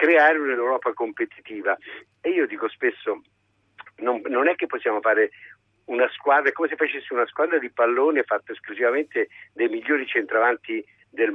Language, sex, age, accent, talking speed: Italian, male, 60-79, native, 150 wpm